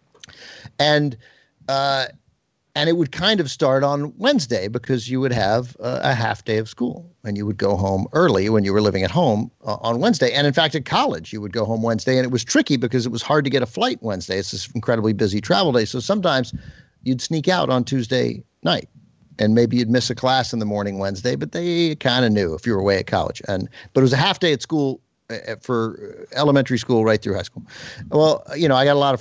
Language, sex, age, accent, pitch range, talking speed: English, male, 50-69, American, 115-145 Hz, 240 wpm